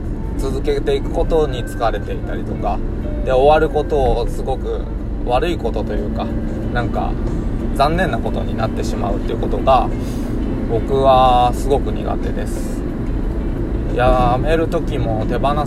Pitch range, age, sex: 105-130 Hz, 20-39, male